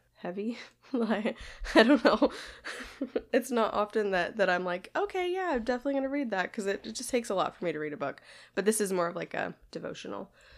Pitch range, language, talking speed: 180-220 Hz, English, 225 wpm